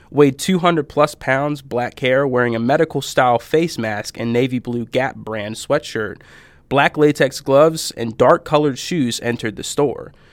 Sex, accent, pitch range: male, American, 120-150 Hz